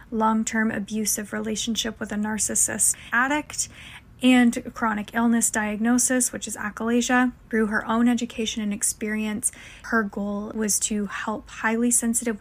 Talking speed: 130 wpm